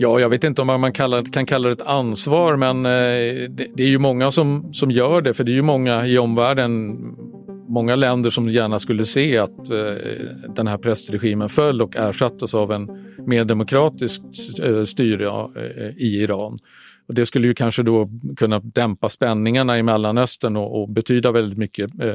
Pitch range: 105-125 Hz